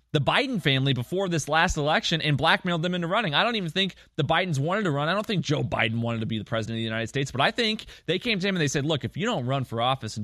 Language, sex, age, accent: English, male, 20-39, American